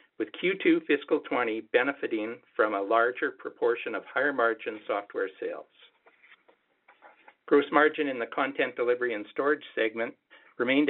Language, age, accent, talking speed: English, 60-79, American, 130 wpm